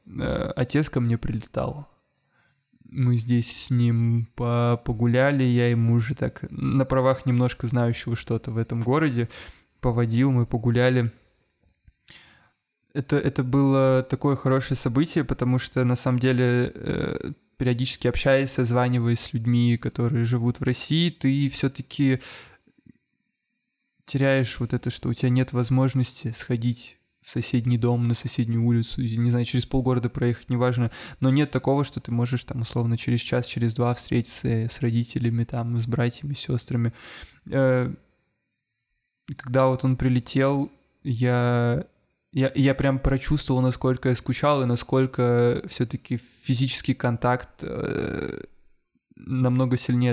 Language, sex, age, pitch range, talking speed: Russian, male, 20-39, 120-135 Hz, 125 wpm